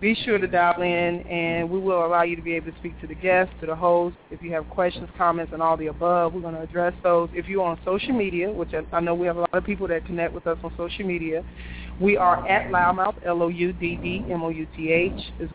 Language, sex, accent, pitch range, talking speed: English, female, American, 165-185 Hz, 240 wpm